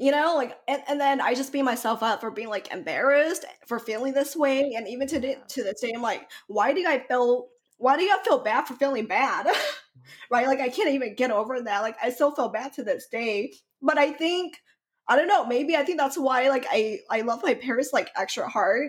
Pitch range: 225-280 Hz